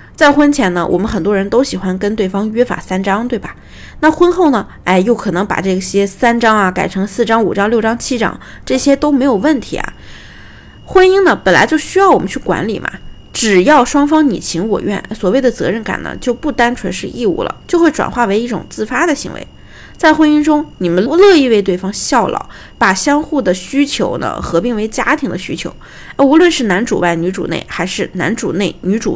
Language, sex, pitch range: Chinese, female, 200-285 Hz